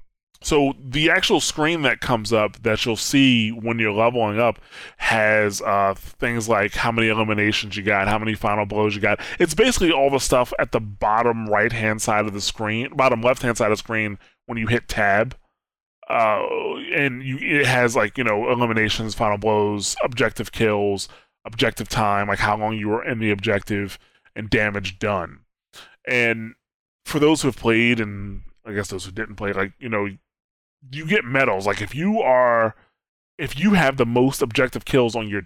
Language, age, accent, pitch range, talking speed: English, 20-39, American, 105-130 Hz, 185 wpm